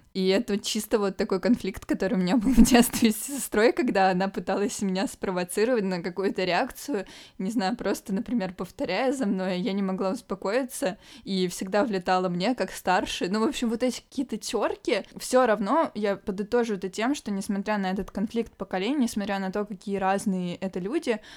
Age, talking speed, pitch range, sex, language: 20-39, 185 wpm, 185-220 Hz, female, Russian